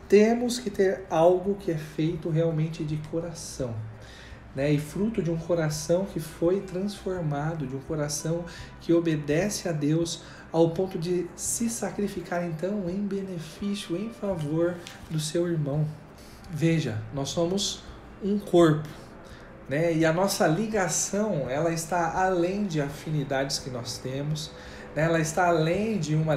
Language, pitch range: Portuguese, 150-180 Hz